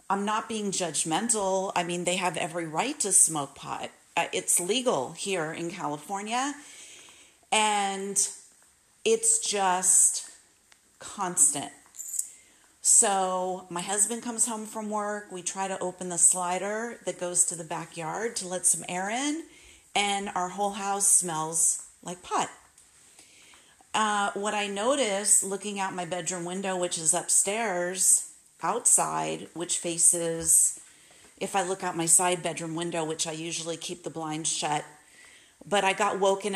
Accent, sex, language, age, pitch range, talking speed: American, female, English, 40-59, 170-200 Hz, 145 wpm